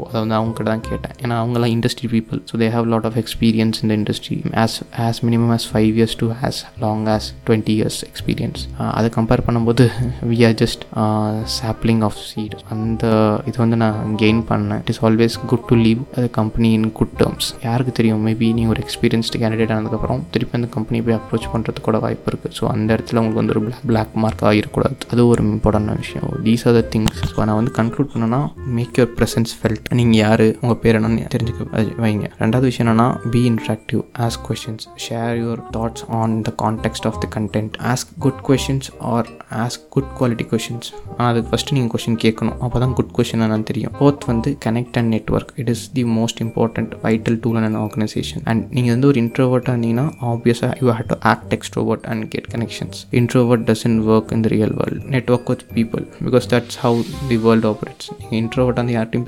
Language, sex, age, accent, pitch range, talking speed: Tamil, male, 20-39, native, 110-120 Hz, 165 wpm